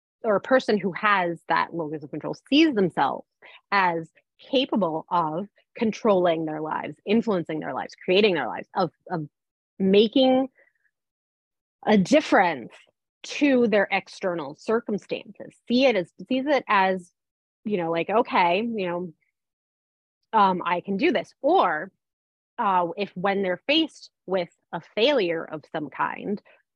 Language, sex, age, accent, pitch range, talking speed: English, female, 30-49, American, 165-210 Hz, 135 wpm